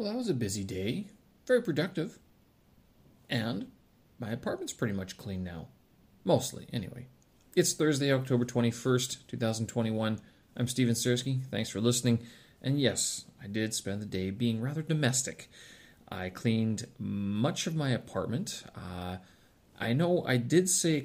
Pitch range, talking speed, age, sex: 100-135 Hz, 150 wpm, 40-59, male